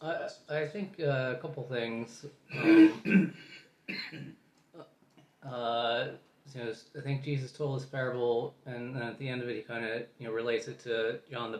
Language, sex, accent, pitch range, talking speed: English, male, American, 115-140 Hz, 175 wpm